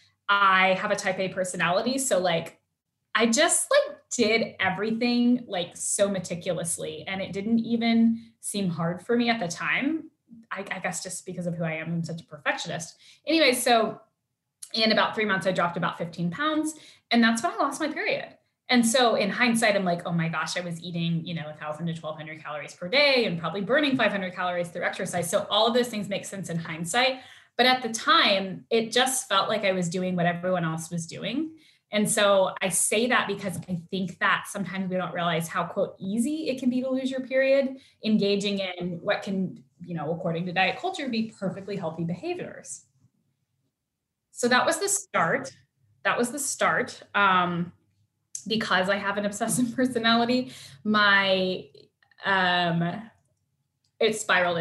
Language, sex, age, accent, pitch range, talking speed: English, female, 10-29, American, 175-235 Hz, 185 wpm